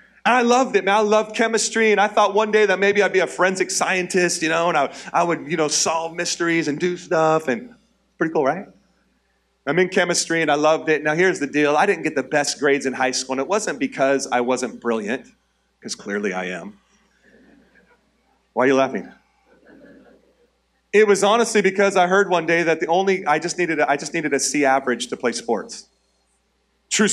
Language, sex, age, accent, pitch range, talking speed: English, male, 30-49, American, 150-200 Hz, 210 wpm